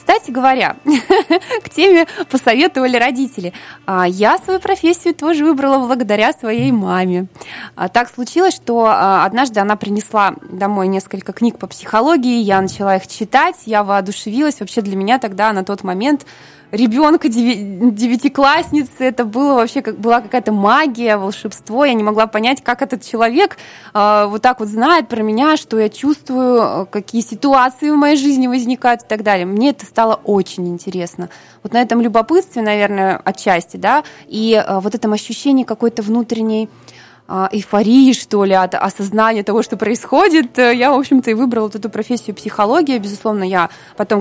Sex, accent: female, native